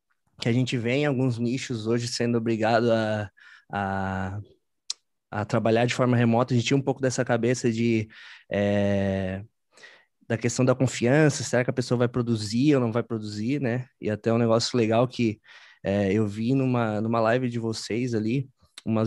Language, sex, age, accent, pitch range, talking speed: Portuguese, male, 20-39, Brazilian, 110-125 Hz, 180 wpm